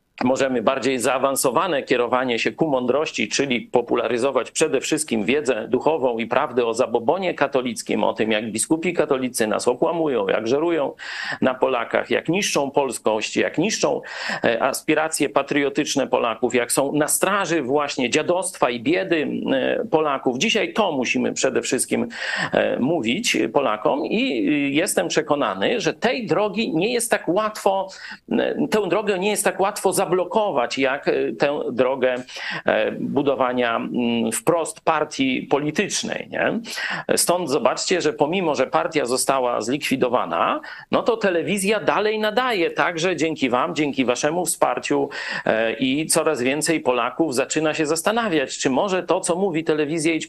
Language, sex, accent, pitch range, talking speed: Polish, male, native, 135-195 Hz, 135 wpm